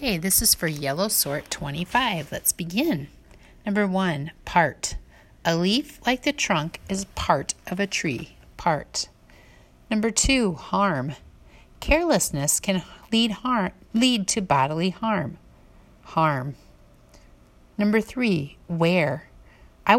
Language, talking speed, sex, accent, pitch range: English, 115 wpm, female, American, 145-220 Hz